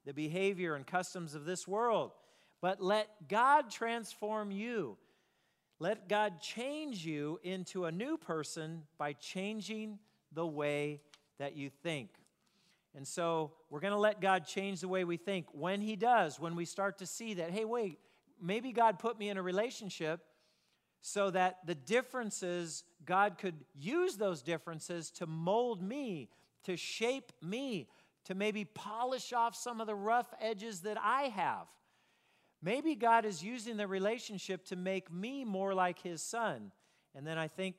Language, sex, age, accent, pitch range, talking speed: German, male, 40-59, American, 150-210 Hz, 160 wpm